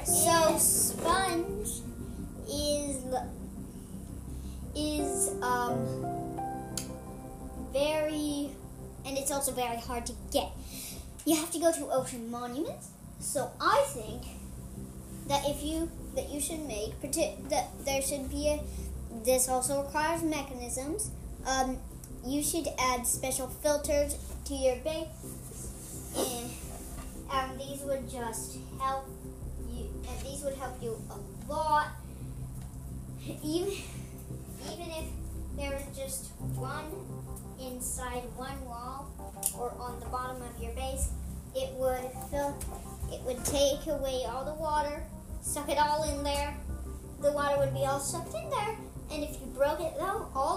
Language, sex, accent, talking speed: English, male, American, 125 wpm